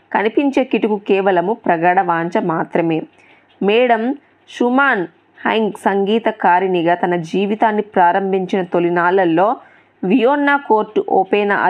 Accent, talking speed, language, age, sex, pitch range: native, 85 wpm, Telugu, 20-39, female, 185-235 Hz